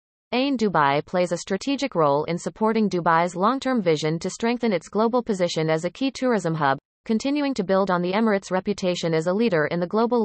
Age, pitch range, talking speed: 30-49, 175-225 Hz, 200 wpm